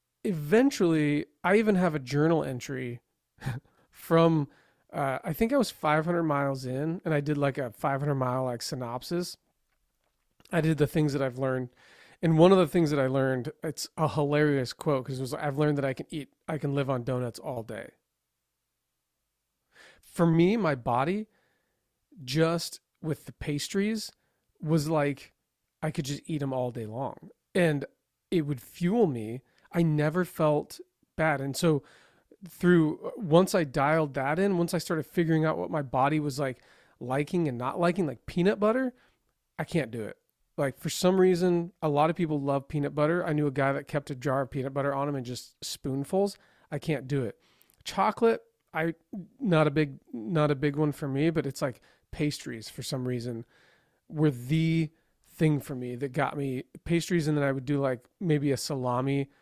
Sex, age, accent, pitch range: male, 30-49, American, 135-165 Hz